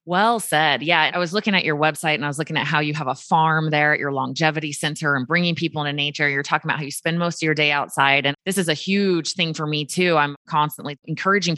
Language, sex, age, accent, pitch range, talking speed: English, female, 20-39, American, 150-185 Hz, 270 wpm